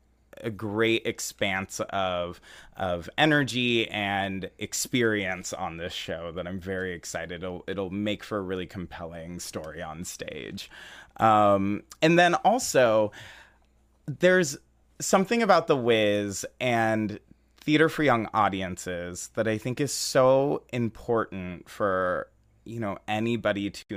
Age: 30-49